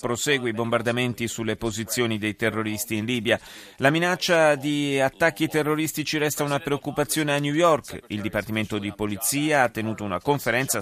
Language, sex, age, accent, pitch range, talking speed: Italian, male, 30-49, native, 110-145 Hz, 155 wpm